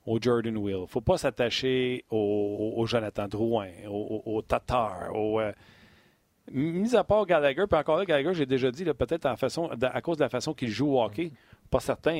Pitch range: 110-145 Hz